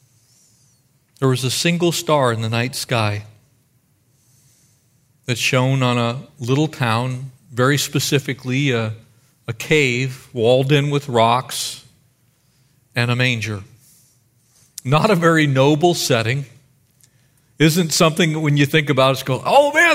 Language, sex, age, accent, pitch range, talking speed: English, male, 50-69, American, 125-155 Hz, 130 wpm